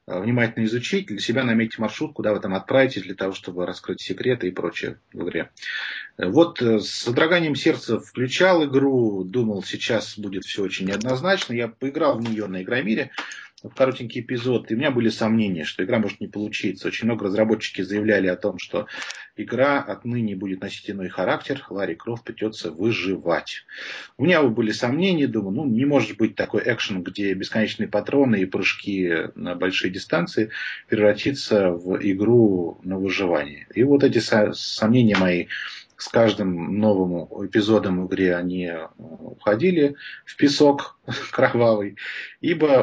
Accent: native